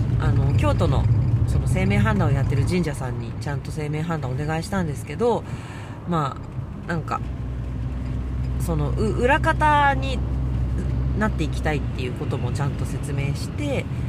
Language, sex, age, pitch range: Japanese, female, 40-59, 115-145 Hz